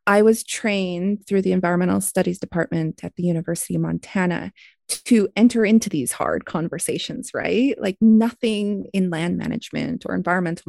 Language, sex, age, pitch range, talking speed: English, female, 20-39, 175-215 Hz, 150 wpm